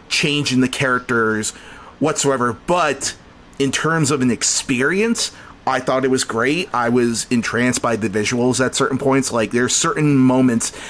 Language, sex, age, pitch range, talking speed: English, male, 30-49, 120-145 Hz, 160 wpm